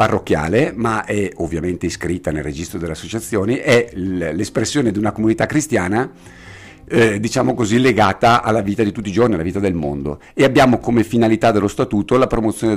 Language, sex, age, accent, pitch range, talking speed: Italian, male, 50-69, native, 90-120 Hz, 175 wpm